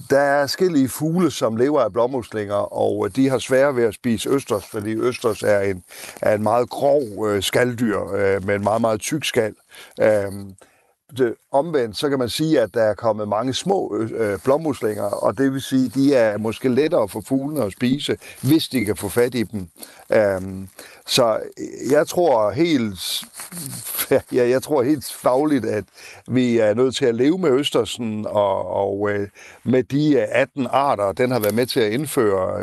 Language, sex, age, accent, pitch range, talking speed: Danish, male, 60-79, native, 105-135 Hz, 165 wpm